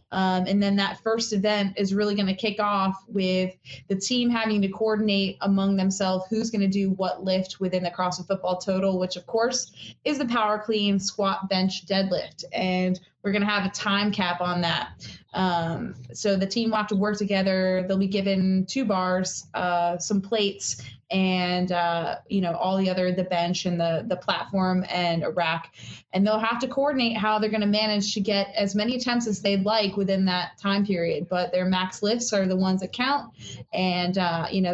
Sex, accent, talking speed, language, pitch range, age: female, American, 205 wpm, English, 180-205 Hz, 20-39